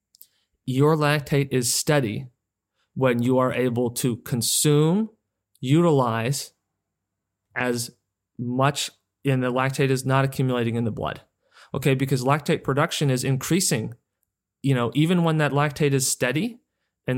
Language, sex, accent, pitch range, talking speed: English, male, American, 125-145 Hz, 130 wpm